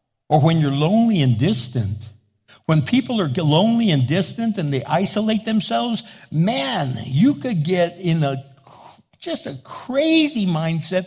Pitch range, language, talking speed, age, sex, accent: 135-200 Hz, English, 140 wpm, 60-79, male, American